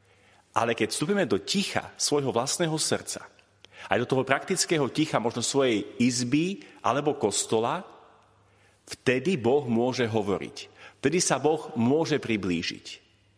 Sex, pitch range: male, 120-170 Hz